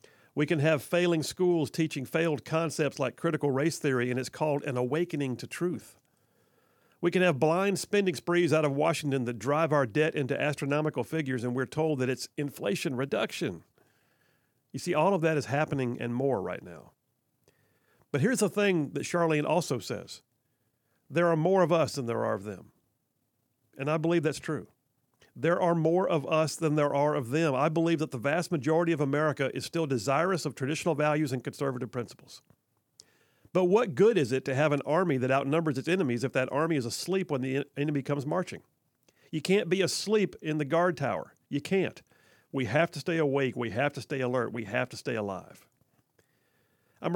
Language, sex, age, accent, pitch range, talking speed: English, male, 50-69, American, 130-165 Hz, 195 wpm